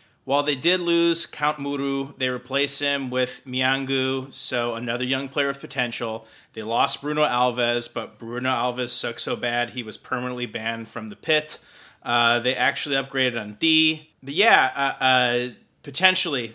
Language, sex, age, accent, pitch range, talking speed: English, male, 30-49, American, 120-140 Hz, 165 wpm